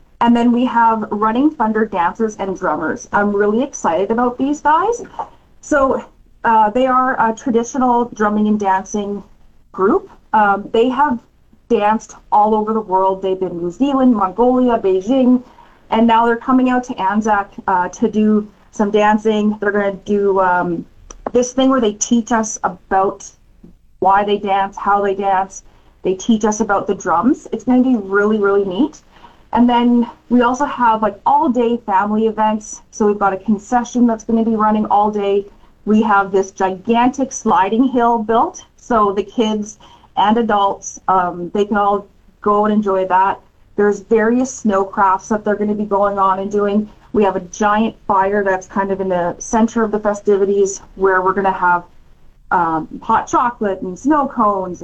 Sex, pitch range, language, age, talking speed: female, 195-240 Hz, English, 30-49, 175 wpm